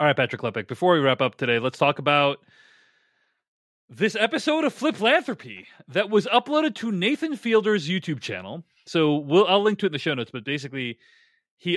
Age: 30-49